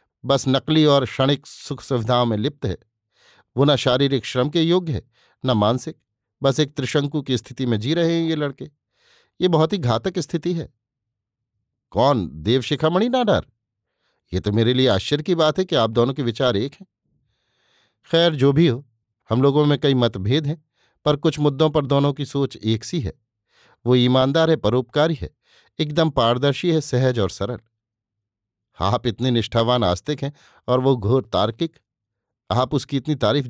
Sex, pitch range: male, 115-150 Hz